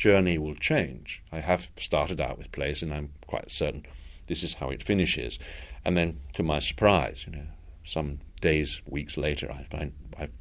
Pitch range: 75-90 Hz